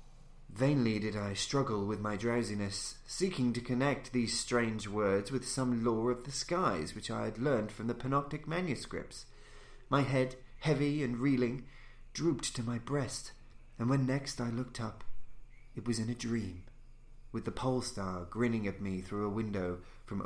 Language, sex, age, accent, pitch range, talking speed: English, male, 30-49, British, 115-140 Hz, 170 wpm